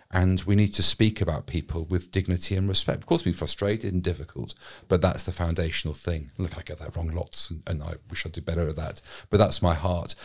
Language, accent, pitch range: English, British, 85-100 Hz